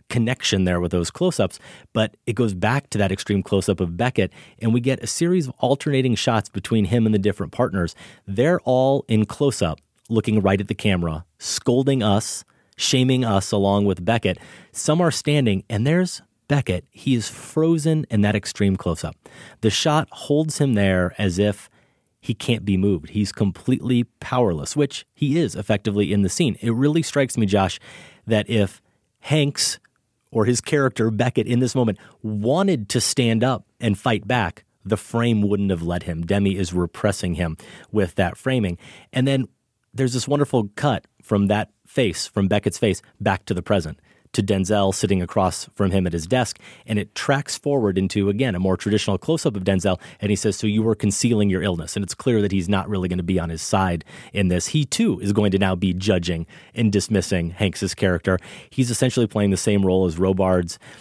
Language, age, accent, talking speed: English, 30-49, American, 190 wpm